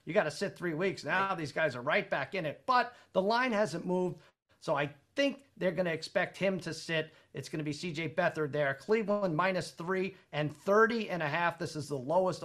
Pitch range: 155-215 Hz